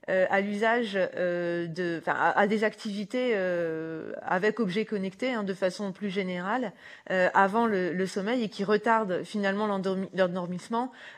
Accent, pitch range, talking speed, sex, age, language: French, 190-235 Hz, 125 wpm, female, 30-49, French